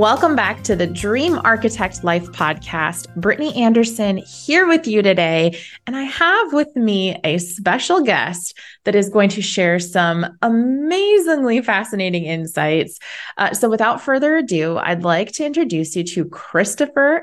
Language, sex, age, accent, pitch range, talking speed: English, female, 20-39, American, 175-265 Hz, 150 wpm